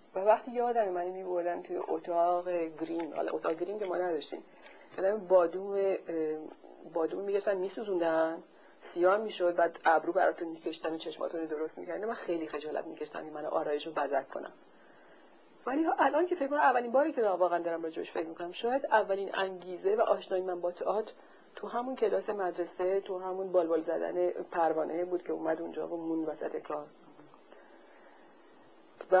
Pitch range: 160-195 Hz